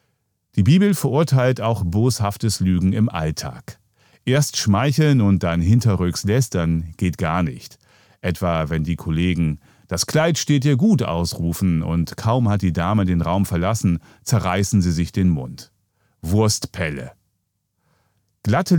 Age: 40-59